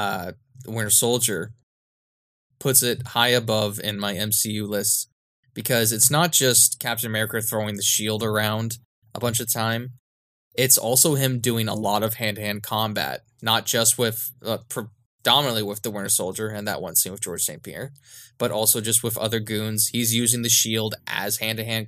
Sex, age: male, 20-39